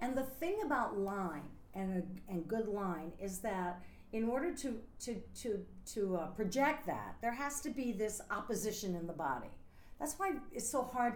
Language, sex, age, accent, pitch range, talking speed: English, female, 50-69, American, 175-230 Hz, 190 wpm